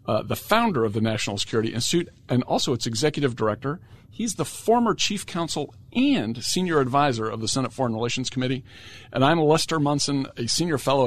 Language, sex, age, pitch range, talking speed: English, male, 50-69, 110-135 Hz, 185 wpm